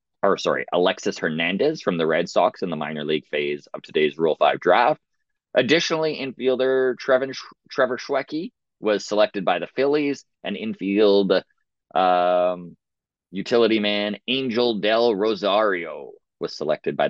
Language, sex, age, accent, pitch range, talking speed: English, male, 30-49, American, 90-125 Hz, 140 wpm